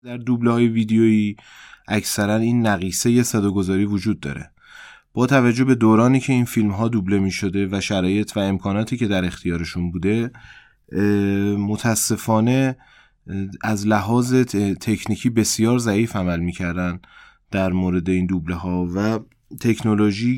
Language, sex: Persian, male